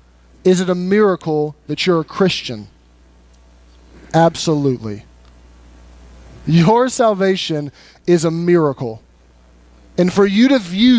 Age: 30-49